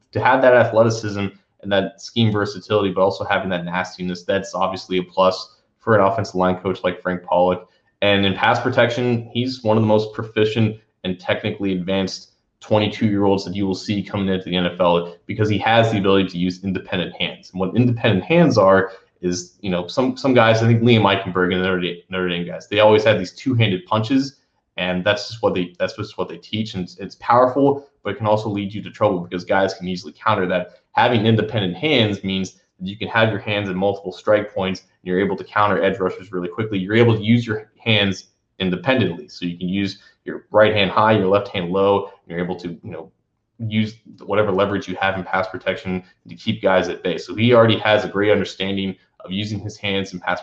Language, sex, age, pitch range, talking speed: English, male, 20-39, 95-110 Hz, 215 wpm